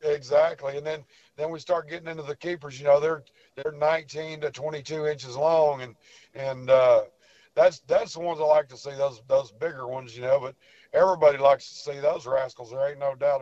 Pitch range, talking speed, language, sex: 145-170 Hz, 210 wpm, English, male